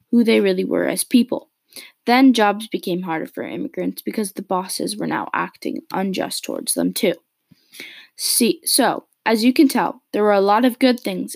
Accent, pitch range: American, 190-250 Hz